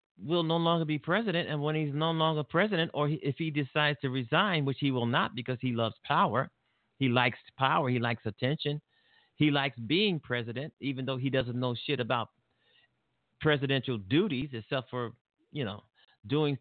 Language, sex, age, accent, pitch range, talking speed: English, male, 40-59, American, 120-150 Hz, 180 wpm